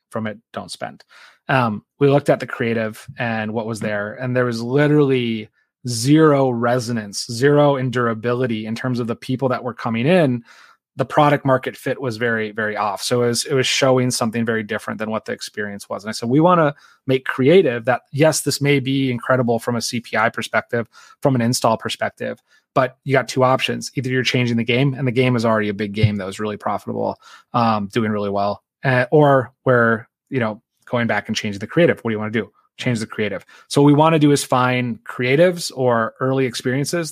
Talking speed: 215 wpm